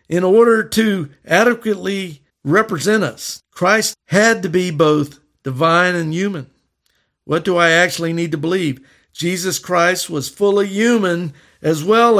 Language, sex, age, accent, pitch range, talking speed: English, male, 50-69, American, 140-175 Hz, 140 wpm